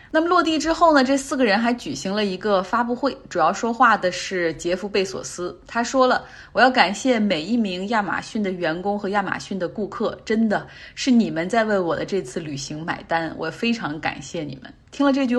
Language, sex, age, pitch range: Chinese, female, 20-39, 185-245 Hz